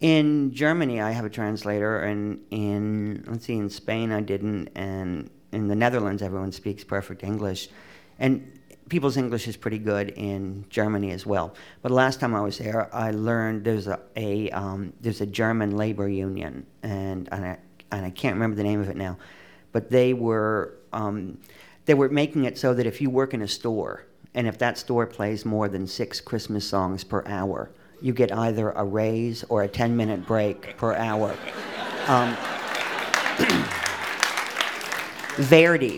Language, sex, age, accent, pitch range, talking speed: English, male, 50-69, American, 100-120 Hz, 175 wpm